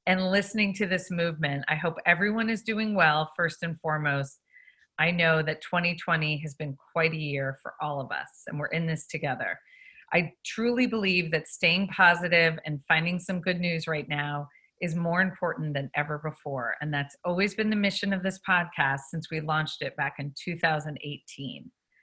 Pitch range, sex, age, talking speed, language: 155-195 Hz, female, 40-59, 185 wpm, English